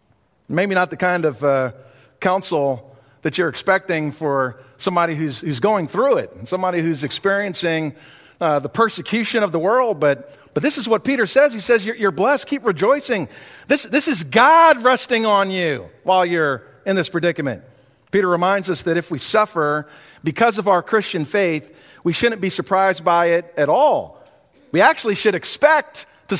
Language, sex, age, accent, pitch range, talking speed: English, male, 50-69, American, 155-195 Hz, 175 wpm